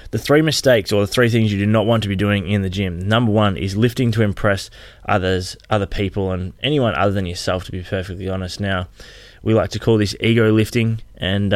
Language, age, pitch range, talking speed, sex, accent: English, 20-39, 95-105 Hz, 230 wpm, male, Australian